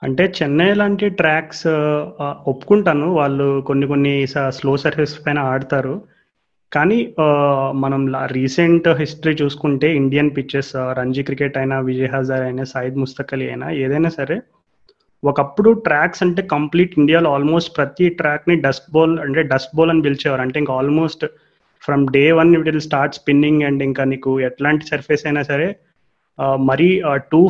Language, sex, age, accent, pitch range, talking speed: Telugu, male, 30-49, native, 135-160 Hz, 140 wpm